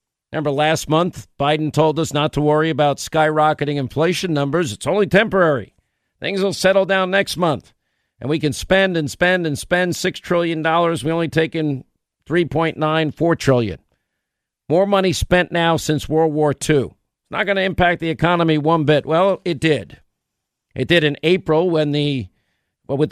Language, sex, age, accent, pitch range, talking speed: English, male, 50-69, American, 140-170 Hz, 170 wpm